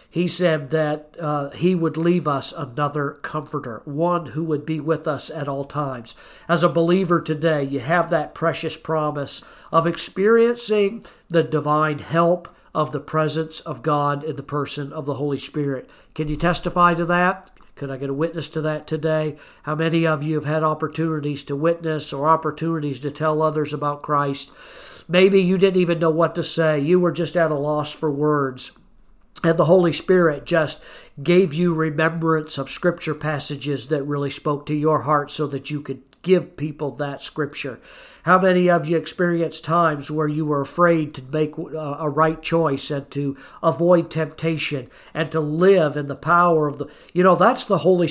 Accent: American